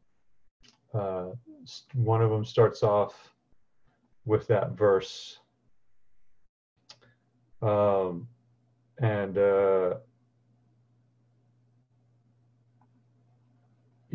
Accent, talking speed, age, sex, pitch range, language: American, 50 wpm, 40-59, male, 100-120 Hz, English